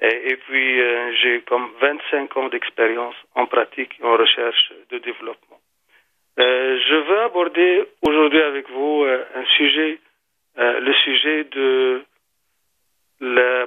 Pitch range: 125-150 Hz